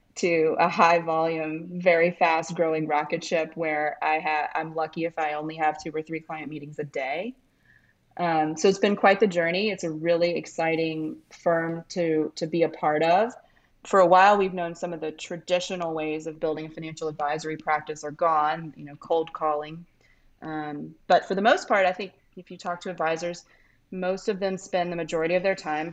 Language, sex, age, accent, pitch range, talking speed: English, female, 30-49, American, 155-180 Hz, 200 wpm